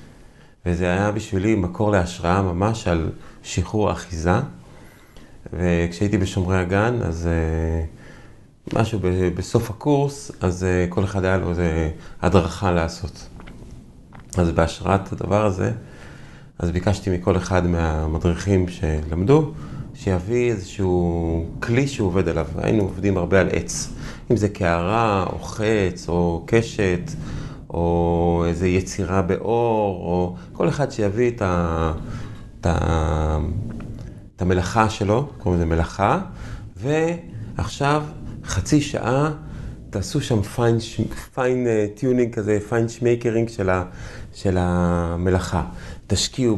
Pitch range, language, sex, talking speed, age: 90-115 Hz, Hebrew, male, 110 wpm, 30-49